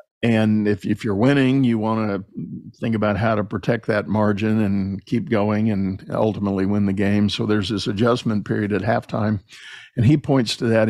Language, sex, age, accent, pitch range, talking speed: English, male, 50-69, American, 105-115 Hz, 195 wpm